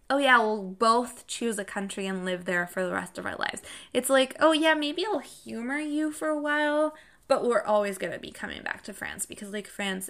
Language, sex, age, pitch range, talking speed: English, female, 20-39, 195-250 Hz, 240 wpm